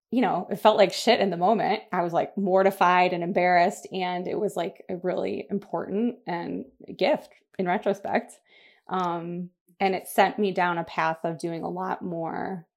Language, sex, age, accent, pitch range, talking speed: English, female, 20-39, American, 175-205 Hz, 185 wpm